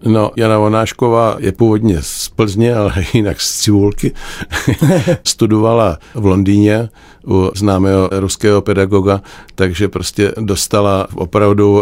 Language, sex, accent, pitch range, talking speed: Czech, male, native, 95-105 Hz, 110 wpm